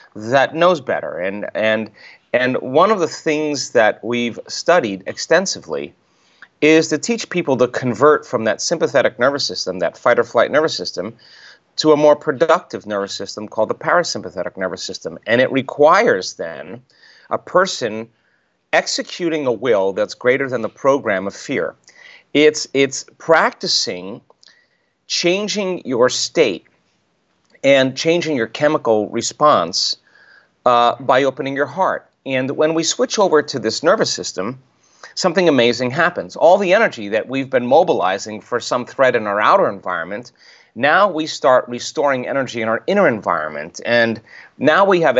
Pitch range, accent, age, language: 120-155 Hz, American, 30-49, English